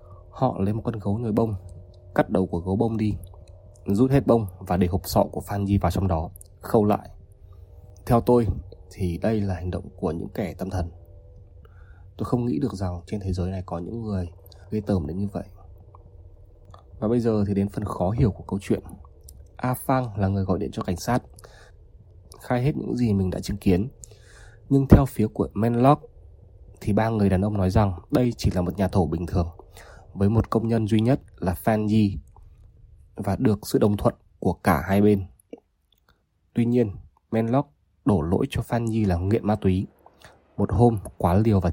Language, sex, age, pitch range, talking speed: Vietnamese, male, 20-39, 95-110 Hz, 200 wpm